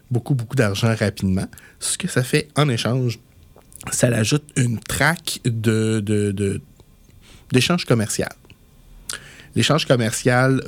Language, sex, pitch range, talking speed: French, male, 100-125 Hz, 125 wpm